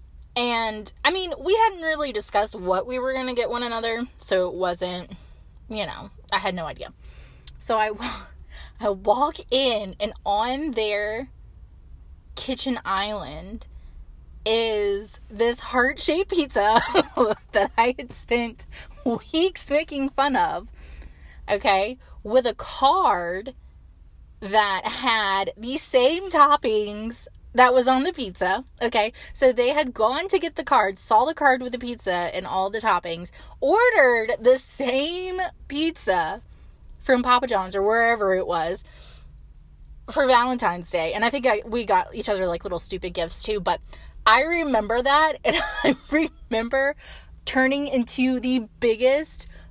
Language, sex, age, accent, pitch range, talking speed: English, female, 20-39, American, 200-280 Hz, 140 wpm